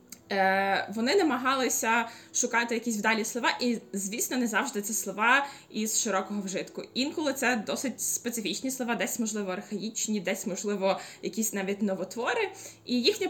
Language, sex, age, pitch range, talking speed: Ukrainian, female, 20-39, 205-275 Hz, 135 wpm